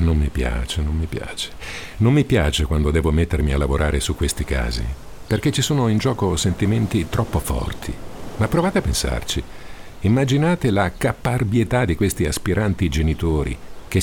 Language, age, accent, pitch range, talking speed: Italian, 50-69, native, 75-105 Hz, 160 wpm